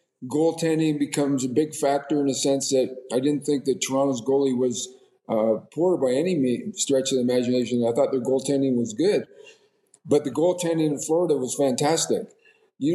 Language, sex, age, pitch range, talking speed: English, male, 50-69, 140-215 Hz, 175 wpm